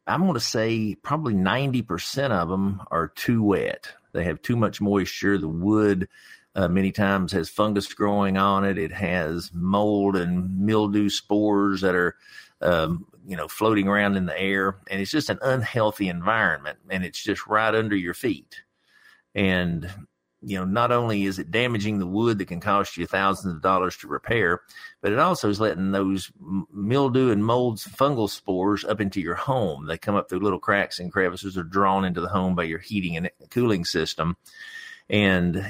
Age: 50-69